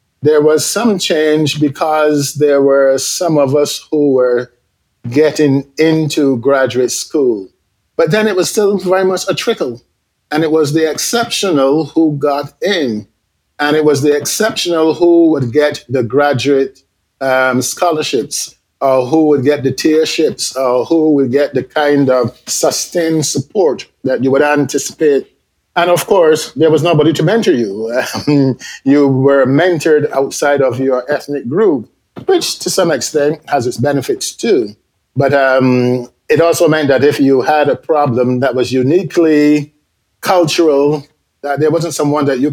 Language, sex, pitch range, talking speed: English, male, 130-160 Hz, 155 wpm